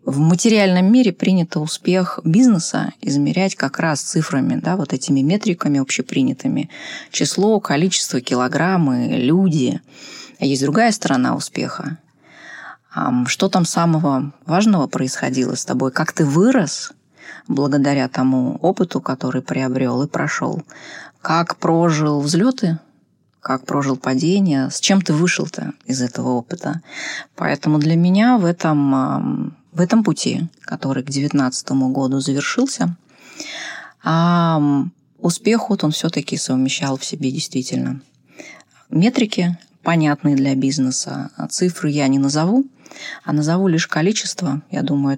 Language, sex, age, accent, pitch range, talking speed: Russian, female, 20-39, native, 140-185 Hz, 115 wpm